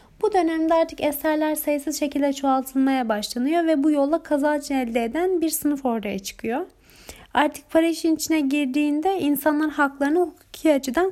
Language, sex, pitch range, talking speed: Turkish, female, 255-320 Hz, 145 wpm